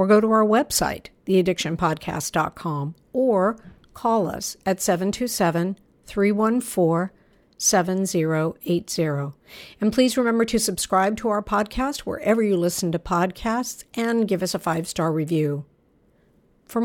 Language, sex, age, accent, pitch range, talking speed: English, female, 60-79, American, 170-220 Hz, 110 wpm